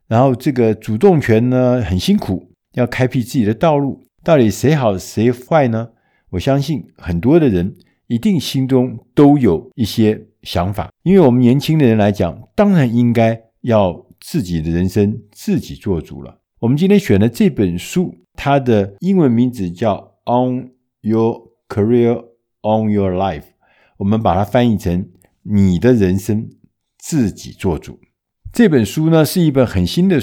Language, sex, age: Chinese, male, 60-79